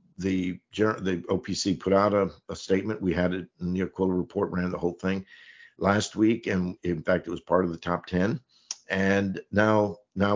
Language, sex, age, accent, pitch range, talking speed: English, male, 50-69, American, 90-105 Hz, 190 wpm